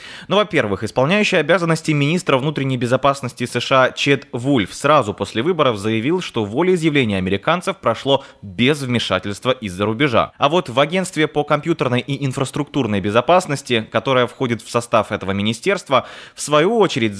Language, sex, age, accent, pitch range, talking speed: Russian, male, 20-39, native, 115-155 Hz, 140 wpm